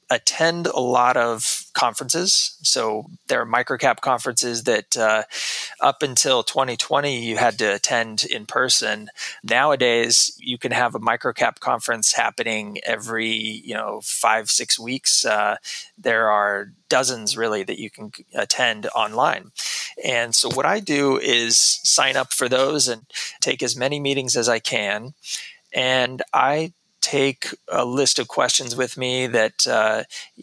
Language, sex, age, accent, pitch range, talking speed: English, male, 20-39, American, 115-140 Hz, 145 wpm